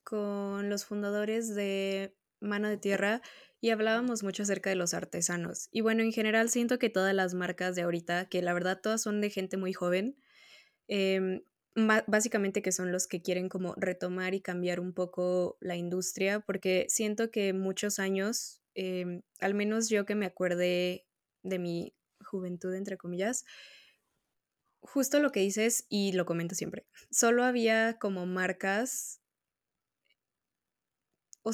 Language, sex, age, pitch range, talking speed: Spanish, female, 20-39, 185-220 Hz, 150 wpm